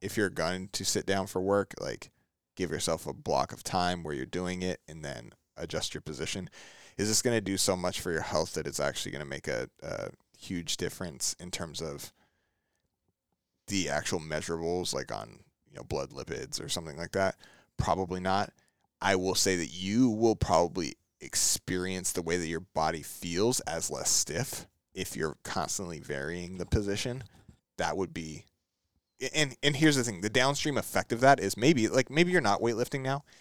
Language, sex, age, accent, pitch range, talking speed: English, male, 20-39, American, 95-125 Hz, 190 wpm